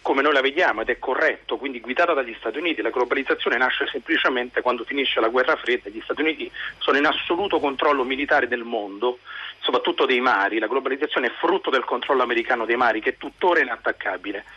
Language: Italian